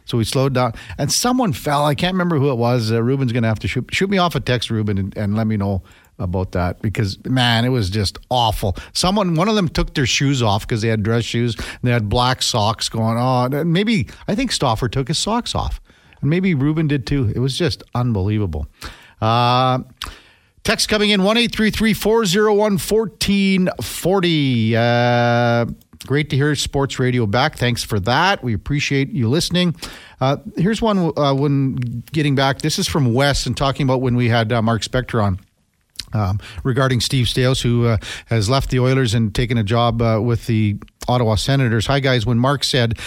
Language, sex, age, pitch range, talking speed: English, male, 50-69, 115-145 Hz, 195 wpm